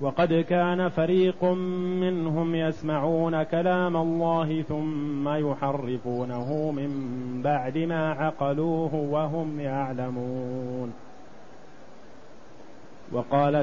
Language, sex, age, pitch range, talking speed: Arabic, male, 30-49, 140-165 Hz, 70 wpm